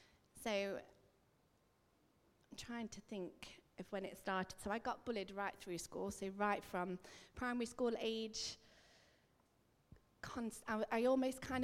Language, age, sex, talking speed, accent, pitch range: English, 30-49, female, 135 wpm, British, 185-220 Hz